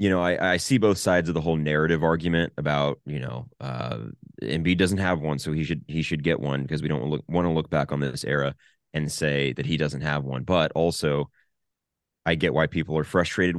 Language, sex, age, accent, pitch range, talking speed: English, male, 30-49, American, 70-85 Hz, 235 wpm